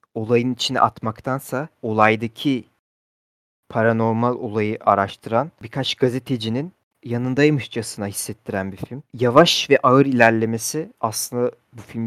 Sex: male